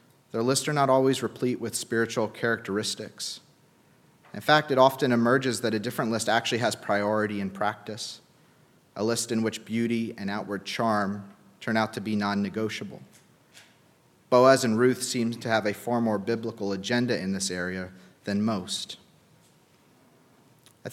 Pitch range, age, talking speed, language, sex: 110-145 Hz, 30-49, 150 wpm, English, male